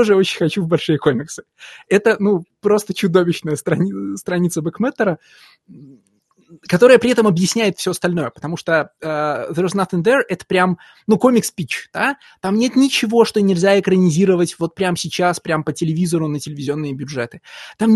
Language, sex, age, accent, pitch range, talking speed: Russian, male, 20-39, native, 155-200 Hz, 145 wpm